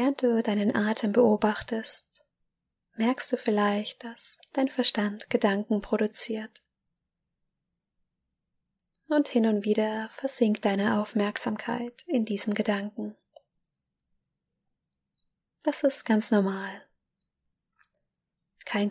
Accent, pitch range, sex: German, 205-235 Hz, female